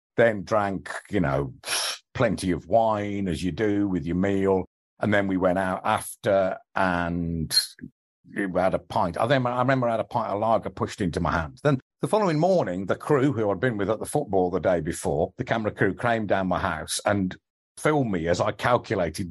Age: 50-69